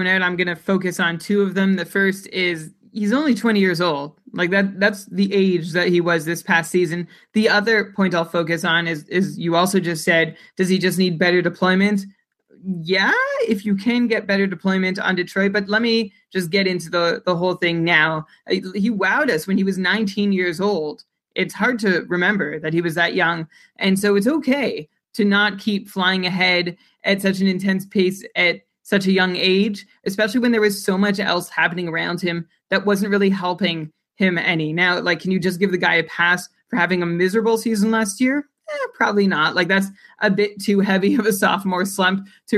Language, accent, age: English, American, 20-39